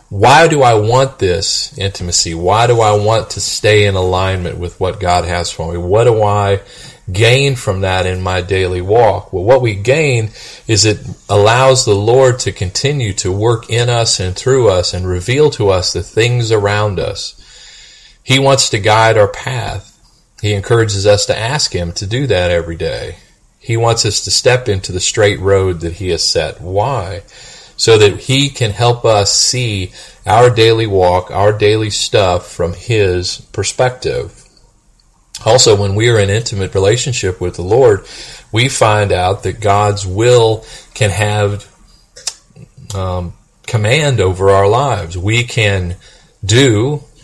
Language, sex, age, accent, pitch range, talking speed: English, male, 30-49, American, 95-120 Hz, 165 wpm